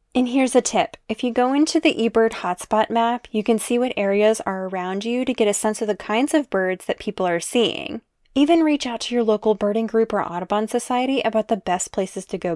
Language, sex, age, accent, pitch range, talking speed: English, female, 10-29, American, 195-245 Hz, 240 wpm